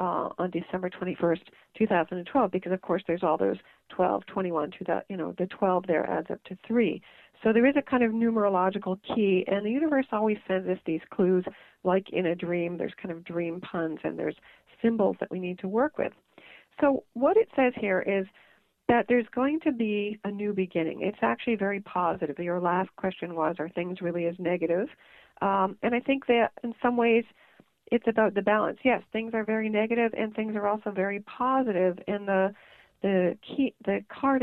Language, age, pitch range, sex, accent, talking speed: English, 40-59, 180-220 Hz, female, American, 195 wpm